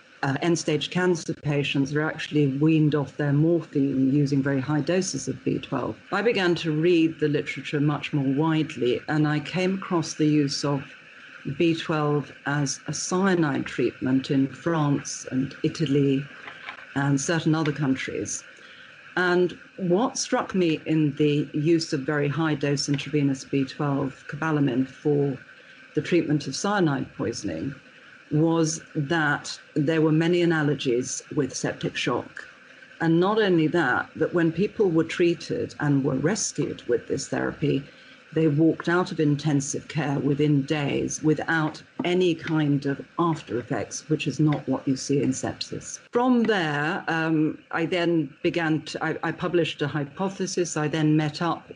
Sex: female